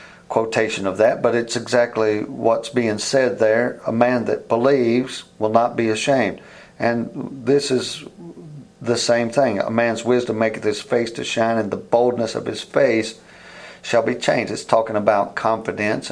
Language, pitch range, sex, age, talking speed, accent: English, 105-120 Hz, male, 50-69, 170 wpm, American